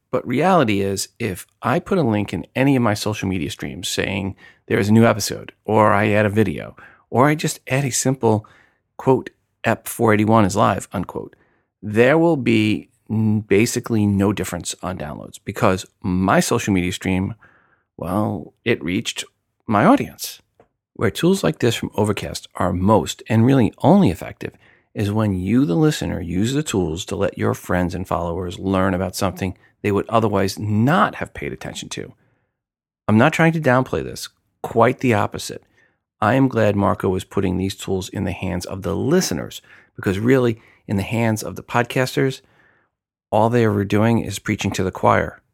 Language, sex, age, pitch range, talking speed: English, male, 40-59, 95-120 Hz, 175 wpm